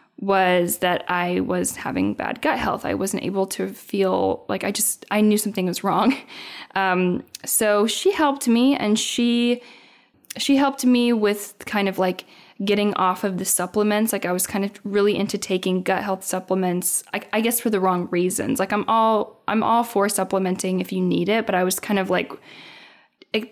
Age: 10-29